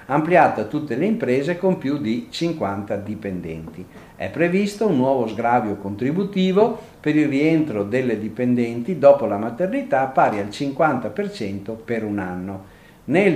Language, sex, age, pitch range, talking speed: Italian, male, 50-69, 105-155 Hz, 135 wpm